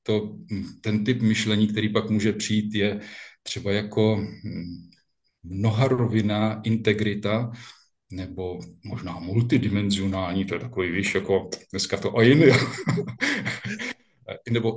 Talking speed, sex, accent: 110 wpm, male, native